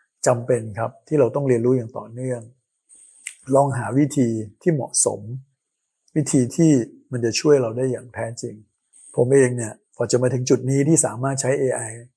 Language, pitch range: Thai, 115-140 Hz